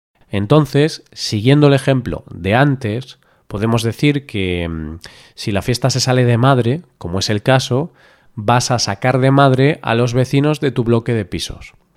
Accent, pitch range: Spanish, 110-140 Hz